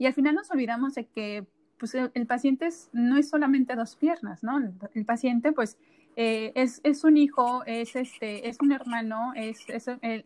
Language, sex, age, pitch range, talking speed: Spanish, female, 30-49, 215-265 Hz, 205 wpm